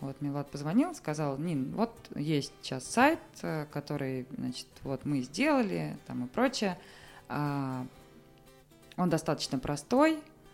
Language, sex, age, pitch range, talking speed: Russian, female, 20-39, 140-180 Hz, 115 wpm